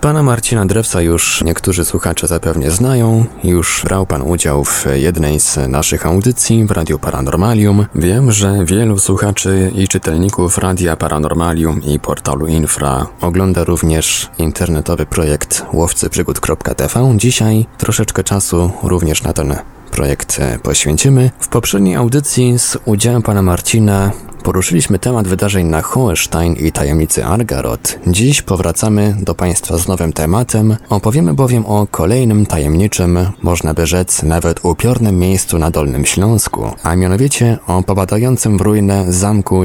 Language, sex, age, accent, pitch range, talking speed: Polish, male, 20-39, native, 85-110 Hz, 130 wpm